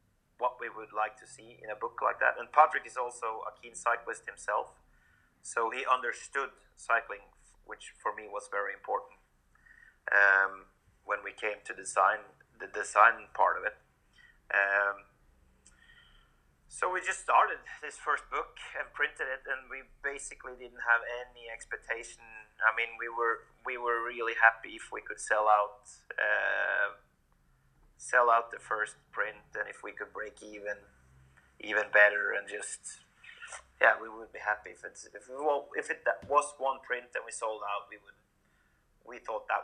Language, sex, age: English, male, 30-49